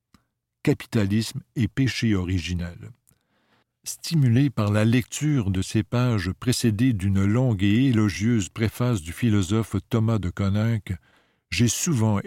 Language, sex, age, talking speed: French, male, 60-79, 115 wpm